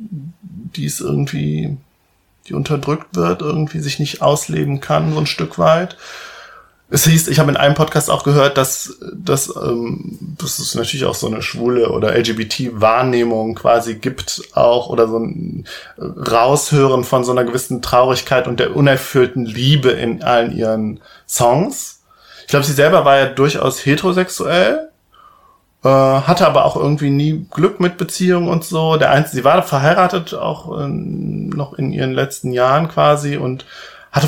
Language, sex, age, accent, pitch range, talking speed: German, male, 20-39, German, 120-155 Hz, 150 wpm